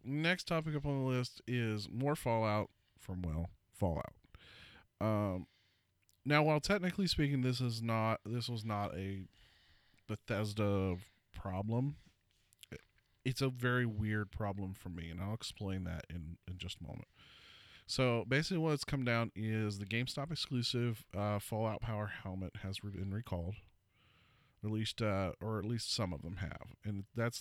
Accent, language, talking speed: American, English, 155 wpm